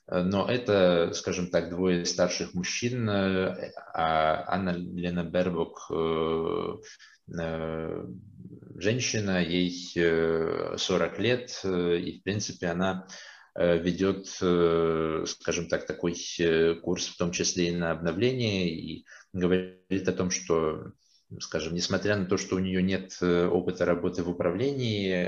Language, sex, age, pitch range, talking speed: Russian, male, 20-39, 85-95 Hz, 115 wpm